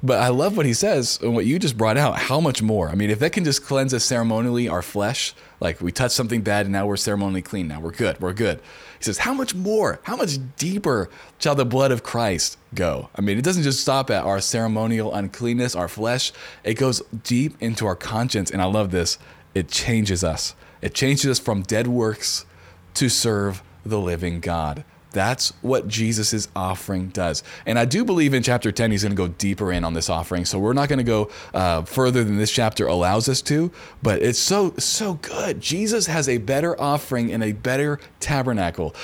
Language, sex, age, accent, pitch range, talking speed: English, male, 20-39, American, 100-140 Hz, 215 wpm